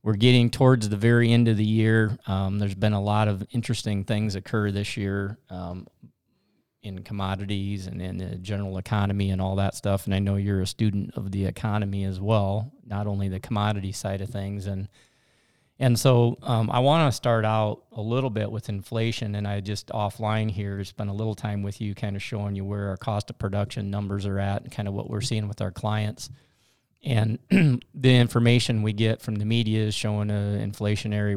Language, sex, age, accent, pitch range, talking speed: English, male, 40-59, American, 100-115 Hz, 205 wpm